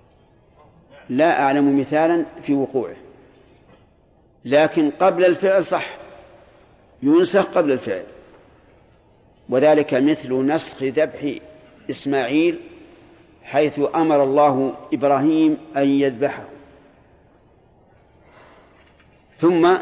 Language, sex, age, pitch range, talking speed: Arabic, male, 50-69, 140-175 Hz, 75 wpm